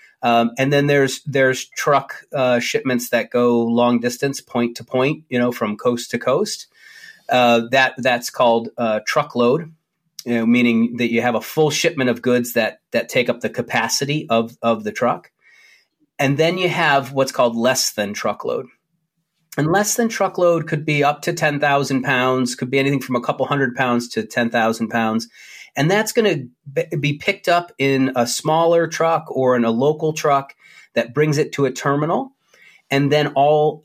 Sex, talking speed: male, 185 wpm